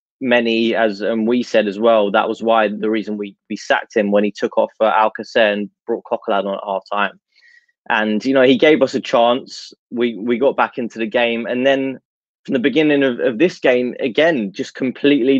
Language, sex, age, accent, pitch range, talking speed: English, male, 20-39, British, 115-130 Hz, 215 wpm